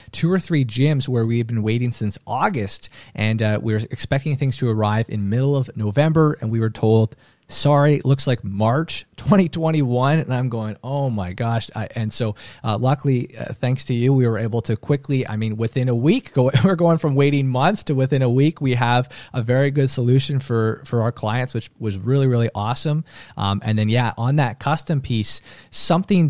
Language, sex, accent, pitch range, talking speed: English, male, American, 110-140 Hz, 210 wpm